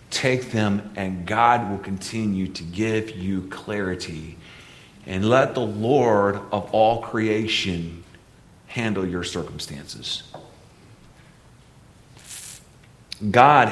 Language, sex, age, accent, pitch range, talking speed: English, male, 40-59, American, 105-135 Hz, 90 wpm